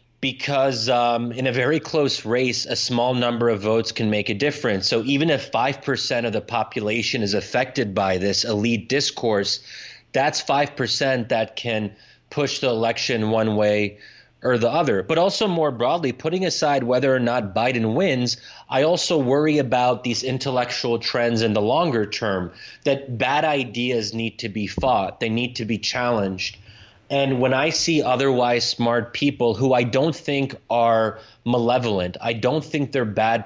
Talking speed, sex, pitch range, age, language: 165 wpm, male, 110-135 Hz, 30-49, English